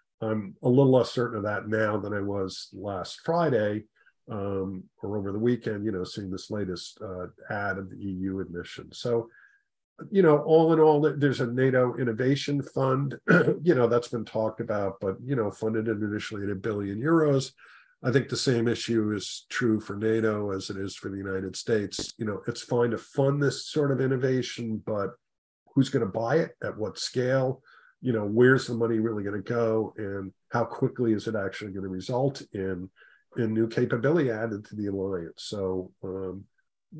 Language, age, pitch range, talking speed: English, 50-69, 105-130 Hz, 195 wpm